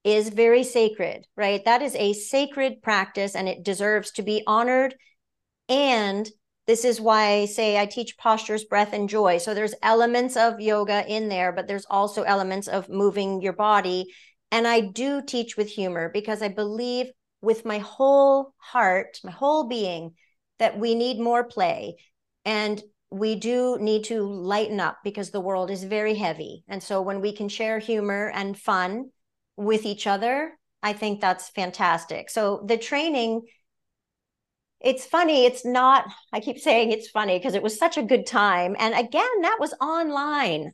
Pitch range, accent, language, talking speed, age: 205-255 Hz, American, English, 170 wpm, 50-69